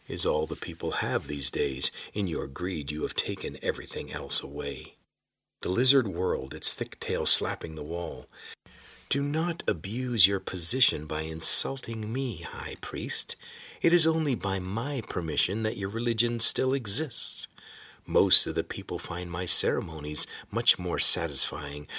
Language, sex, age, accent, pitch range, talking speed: English, male, 50-69, American, 90-140 Hz, 155 wpm